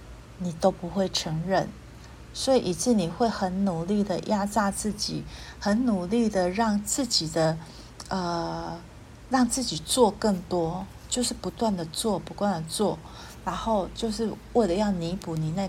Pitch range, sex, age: 170-215 Hz, female, 40-59